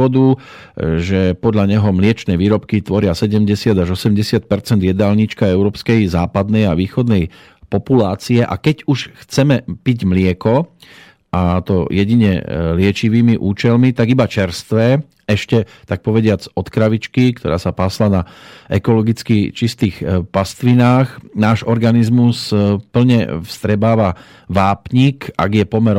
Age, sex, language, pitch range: 40-59, male, Slovak, 95-120 Hz